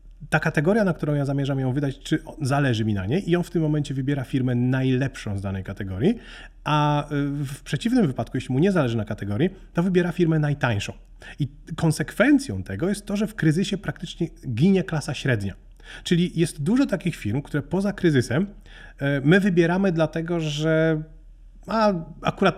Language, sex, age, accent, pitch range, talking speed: Polish, male, 30-49, native, 130-170 Hz, 170 wpm